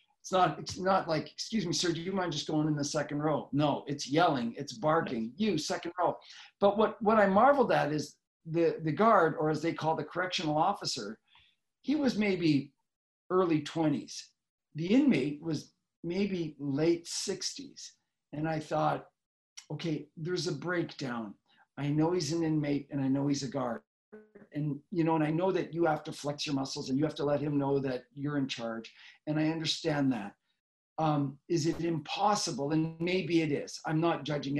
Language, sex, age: English, male, 50-69